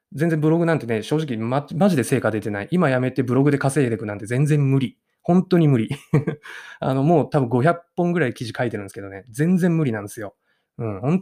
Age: 20-39